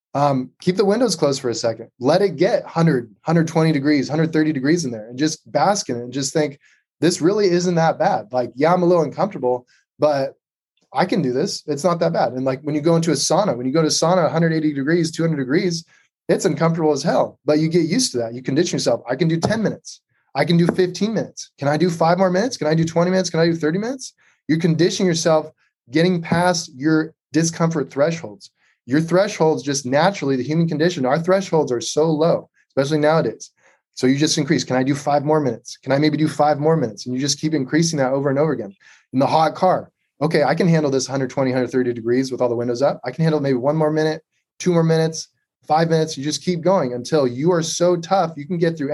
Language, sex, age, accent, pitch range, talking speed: English, male, 20-39, American, 140-170 Hz, 240 wpm